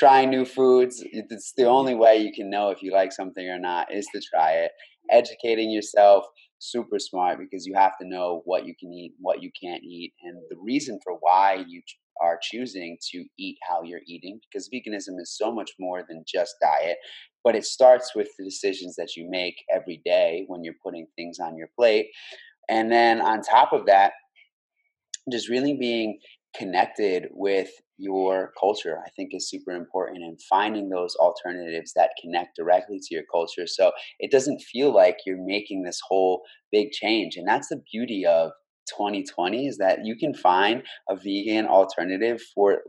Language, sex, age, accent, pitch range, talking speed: English, male, 30-49, American, 95-125 Hz, 185 wpm